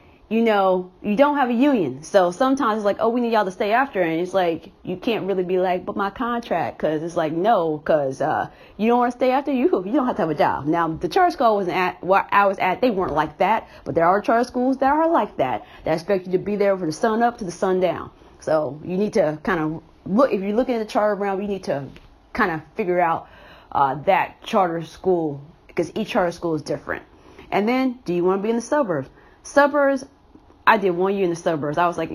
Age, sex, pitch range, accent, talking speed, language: 30-49, female, 175-240 Hz, American, 260 wpm, English